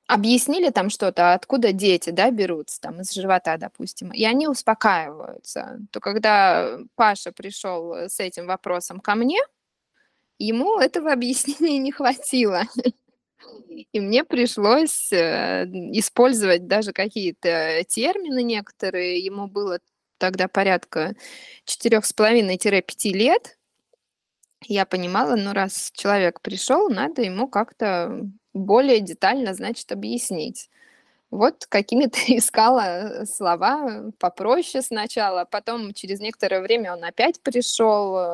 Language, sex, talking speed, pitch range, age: Russian, female, 105 wpm, 180-245 Hz, 20-39